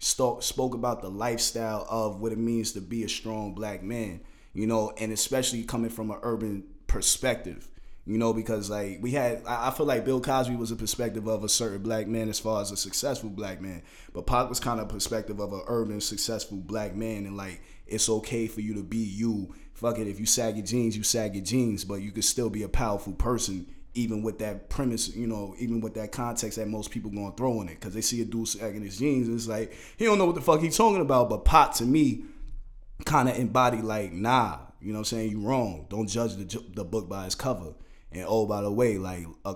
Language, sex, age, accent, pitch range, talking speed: English, male, 20-39, American, 100-115 Hz, 240 wpm